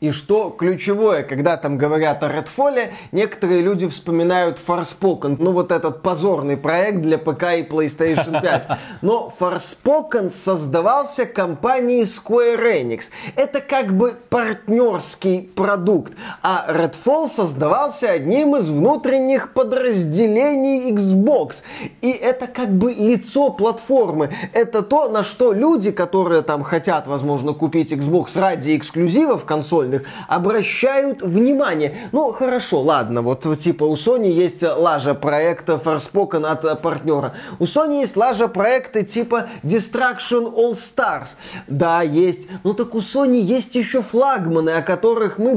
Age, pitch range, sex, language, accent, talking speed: 20-39, 170-245 Hz, male, Russian, native, 130 wpm